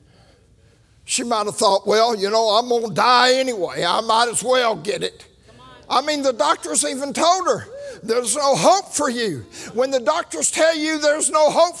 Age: 60-79